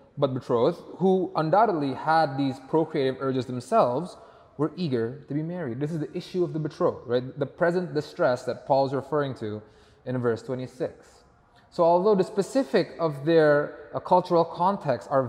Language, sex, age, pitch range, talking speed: English, male, 20-39, 130-170 Hz, 165 wpm